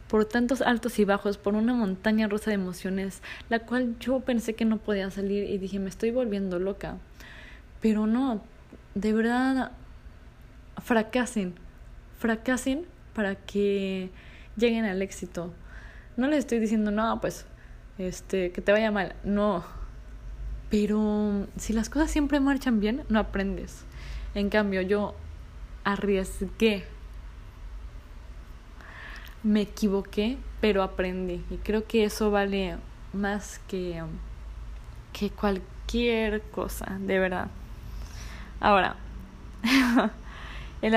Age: 20-39